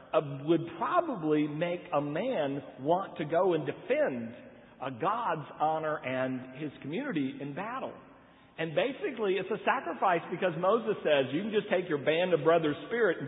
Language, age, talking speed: English, 50-69, 165 wpm